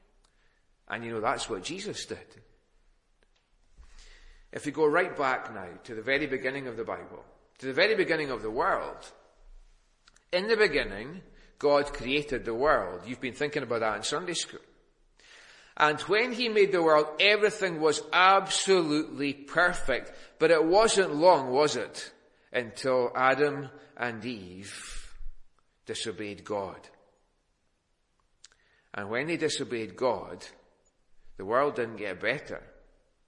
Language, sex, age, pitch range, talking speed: English, male, 40-59, 115-180 Hz, 135 wpm